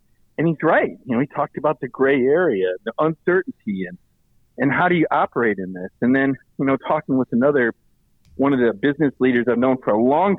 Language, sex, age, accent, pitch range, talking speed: English, male, 50-69, American, 125-185 Hz, 220 wpm